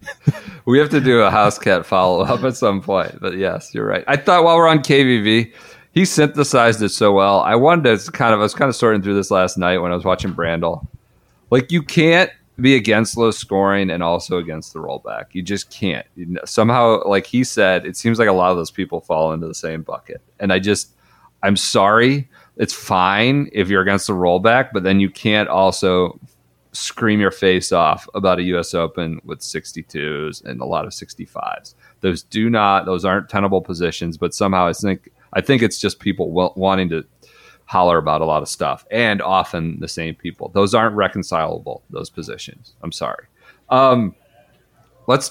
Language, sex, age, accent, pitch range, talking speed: English, male, 30-49, American, 90-135 Hz, 200 wpm